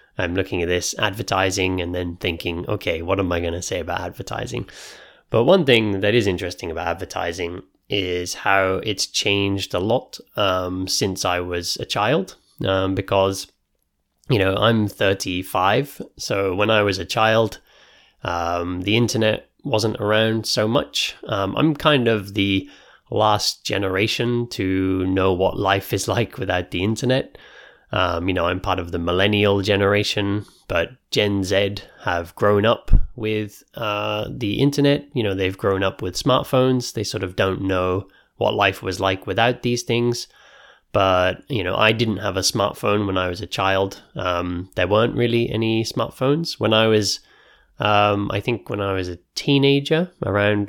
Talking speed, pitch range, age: 165 wpm, 95-115 Hz, 20-39